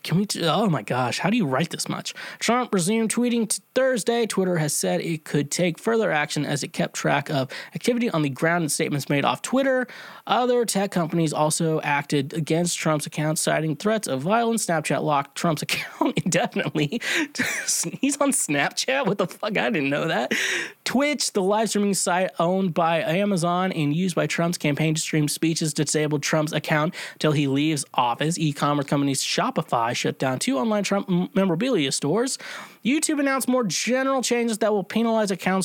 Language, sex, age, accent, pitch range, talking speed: English, male, 20-39, American, 150-210 Hz, 180 wpm